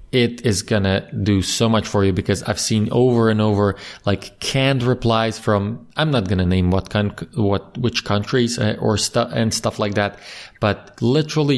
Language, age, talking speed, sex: English, 20-39, 185 wpm, male